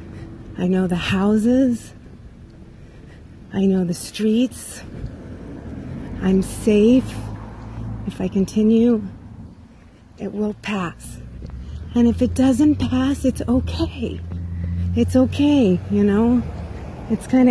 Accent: American